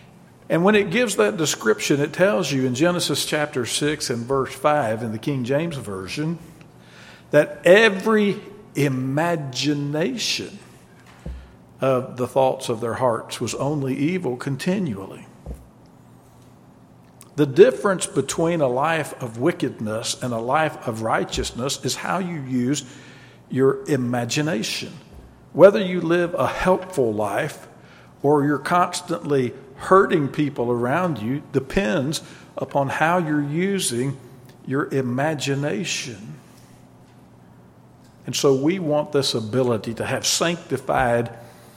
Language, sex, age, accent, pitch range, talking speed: English, male, 50-69, American, 125-160 Hz, 115 wpm